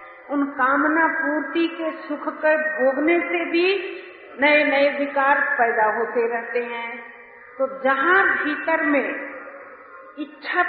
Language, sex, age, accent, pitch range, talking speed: Hindi, female, 50-69, native, 270-335 Hz, 120 wpm